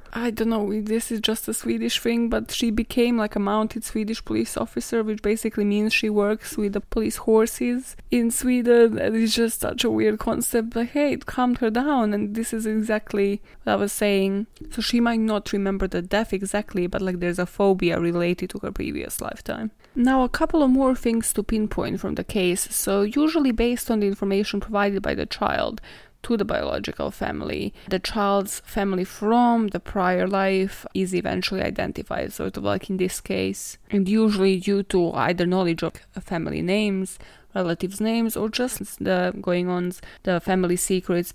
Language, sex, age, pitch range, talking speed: English, female, 20-39, 185-225 Hz, 185 wpm